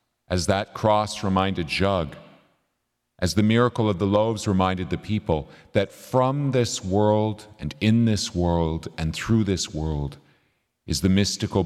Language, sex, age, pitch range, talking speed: English, male, 50-69, 90-115 Hz, 150 wpm